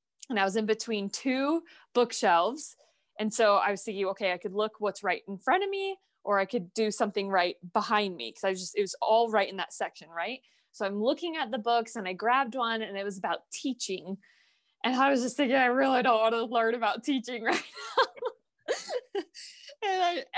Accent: American